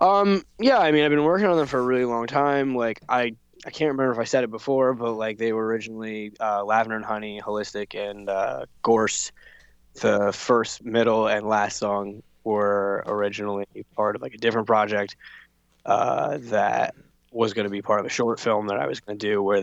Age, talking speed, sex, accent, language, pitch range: 10-29, 210 wpm, male, American, English, 100-115 Hz